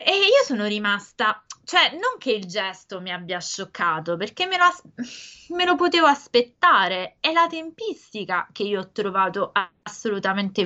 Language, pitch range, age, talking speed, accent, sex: Italian, 185-260 Hz, 20-39, 160 wpm, native, female